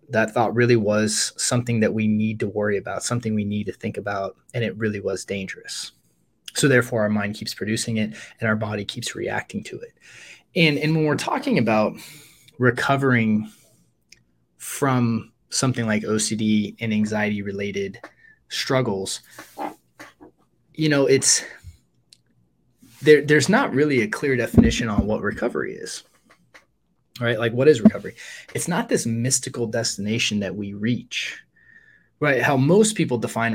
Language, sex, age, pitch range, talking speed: English, male, 20-39, 105-135 Hz, 150 wpm